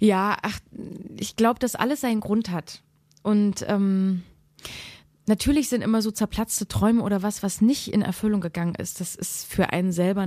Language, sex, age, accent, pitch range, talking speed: German, female, 20-39, German, 175-205 Hz, 175 wpm